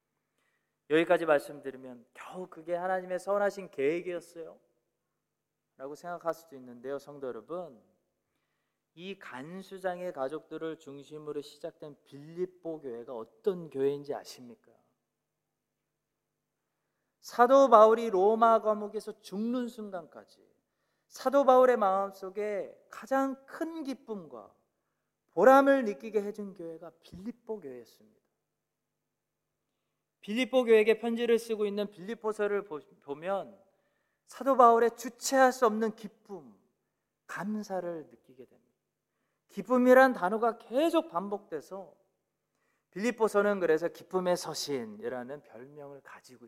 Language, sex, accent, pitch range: Korean, male, native, 160-230 Hz